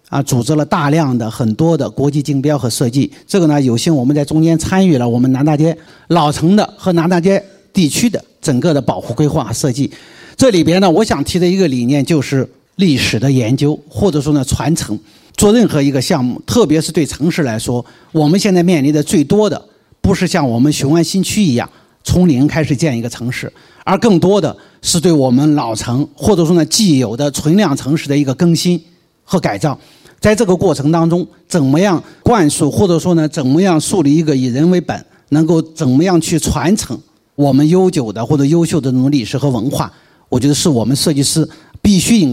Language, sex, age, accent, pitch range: Chinese, male, 50-69, native, 135-170 Hz